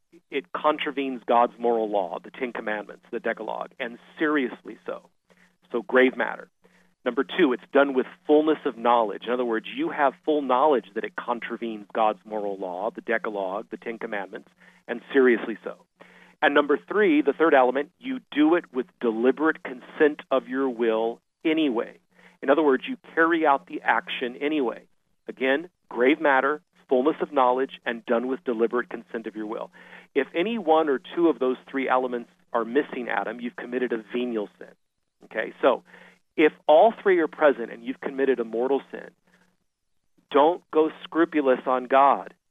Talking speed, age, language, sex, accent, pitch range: 170 wpm, 40-59, English, male, American, 120-160 Hz